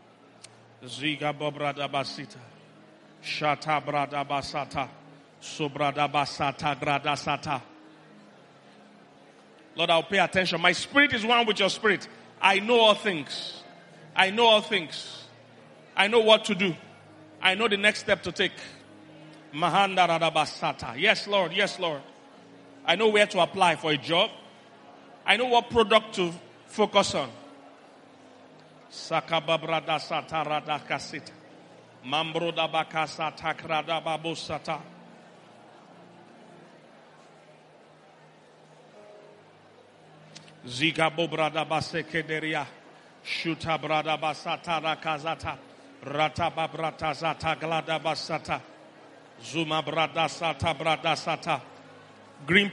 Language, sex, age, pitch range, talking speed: English, male, 40-59, 150-180 Hz, 85 wpm